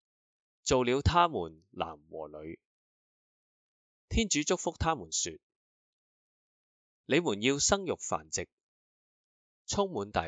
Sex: male